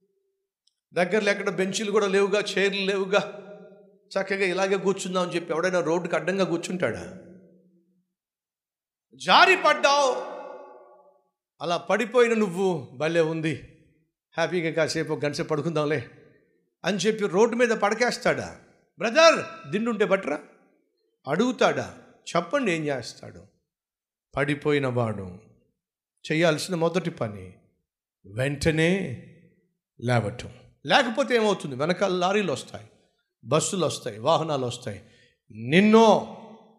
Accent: native